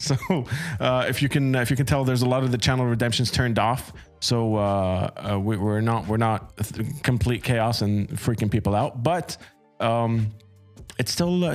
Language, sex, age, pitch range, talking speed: English, male, 20-39, 105-135 Hz, 195 wpm